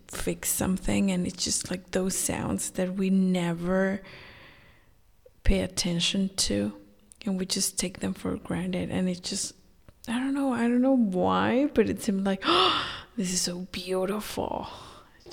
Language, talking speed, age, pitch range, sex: English, 160 wpm, 20-39, 120-195 Hz, female